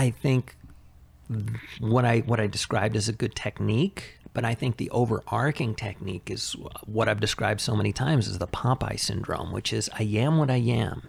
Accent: American